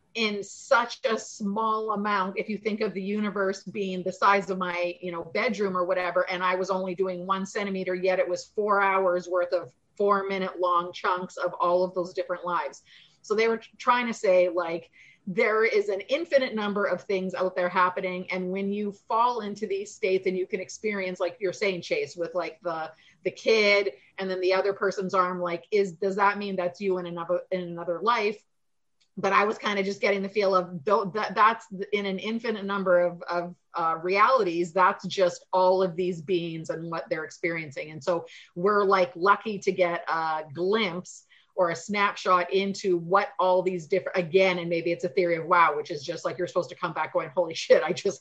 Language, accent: English, American